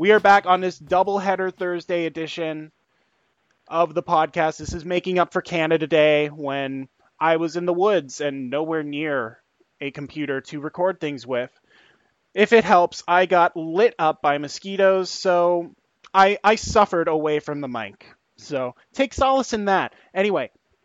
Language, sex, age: English, male, 20-39